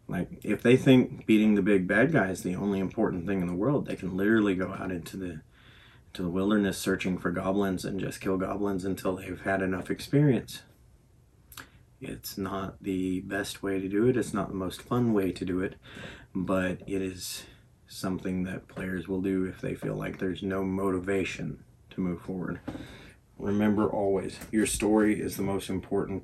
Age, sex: 30-49, male